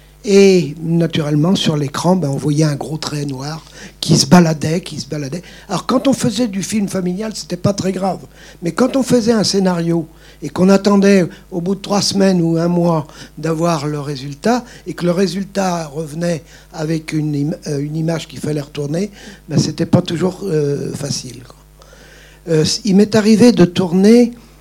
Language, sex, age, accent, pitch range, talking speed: French, male, 50-69, French, 155-190 Hz, 180 wpm